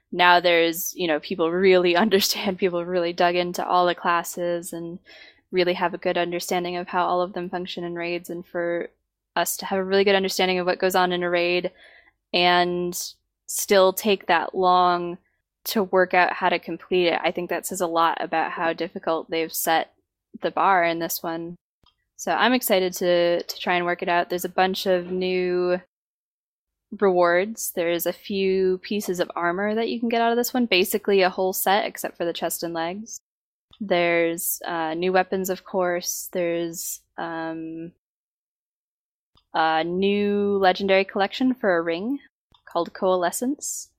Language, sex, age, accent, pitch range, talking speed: English, female, 10-29, American, 175-195 Hz, 175 wpm